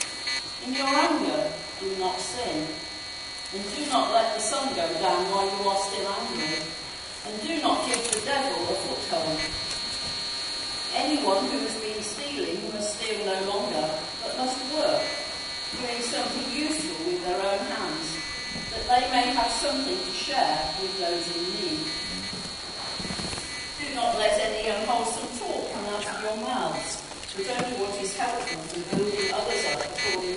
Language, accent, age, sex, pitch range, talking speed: English, British, 40-59, female, 185-255 Hz, 155 wpm